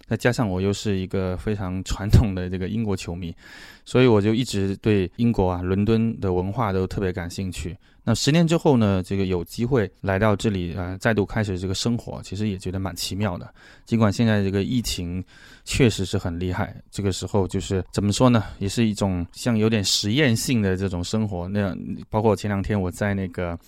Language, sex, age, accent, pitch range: Chinese, male, 20-39, native, 95-115 Hz